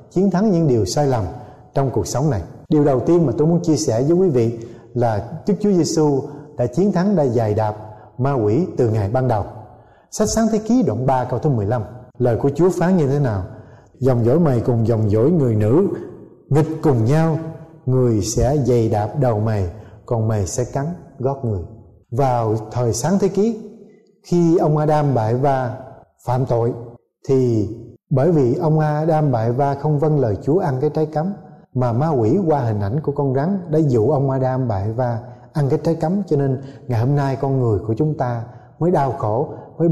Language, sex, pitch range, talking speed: Vietnamese, male, 115-155 Hz, 205 wpm